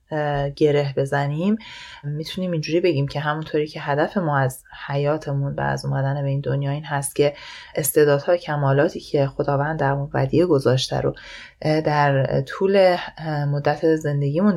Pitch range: 145-195 Hz